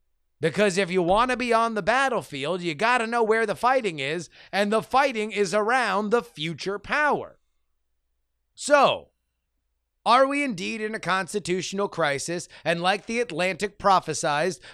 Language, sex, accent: English, male, American